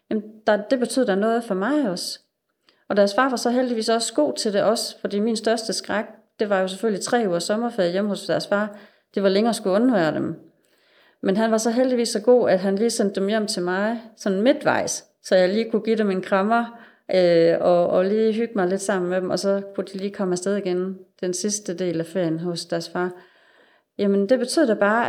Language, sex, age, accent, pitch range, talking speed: Danish, female, 30-49, native, 185-230 Hz, 230 wpm